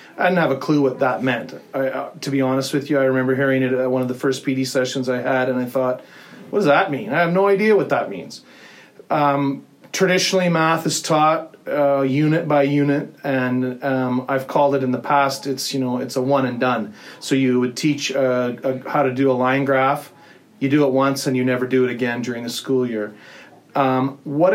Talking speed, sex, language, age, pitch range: 230 wpm, male, English, 30-49, 130-155 Hz